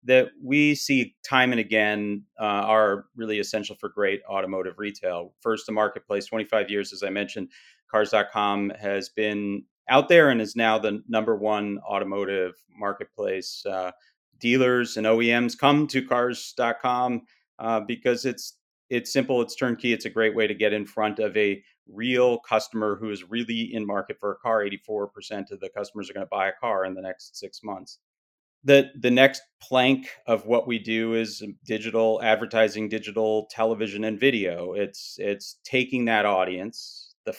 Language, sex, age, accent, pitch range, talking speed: English, male, 40-59, American, 100-120 Hz, 165 wpm